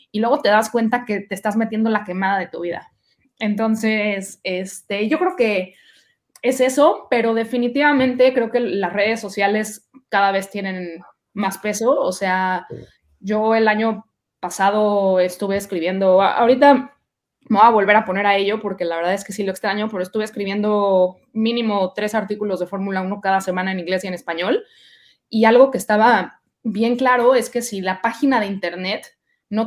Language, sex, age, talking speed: Spanish, female, 20-39, 180 wpm